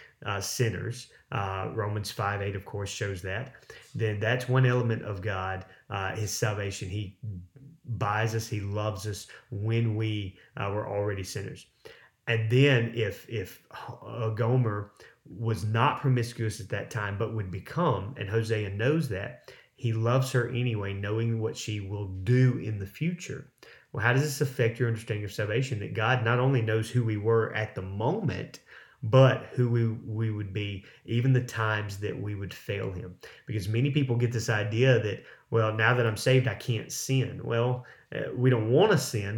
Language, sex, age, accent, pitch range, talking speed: English, male, 30-49, American, 105-130 Hz, 180 wpm